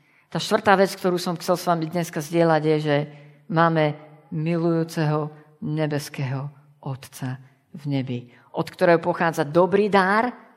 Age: 50-69